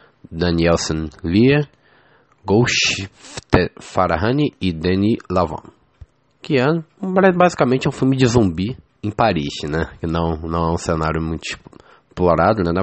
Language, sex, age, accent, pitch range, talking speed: English, male, 20-39, Brazilian, 80-105 Hz, 125 wpm